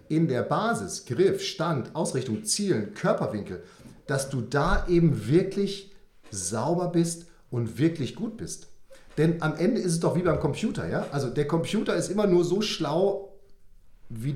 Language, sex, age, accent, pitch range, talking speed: German, male, 40-59, German, 130-180 Hz, 160 wpm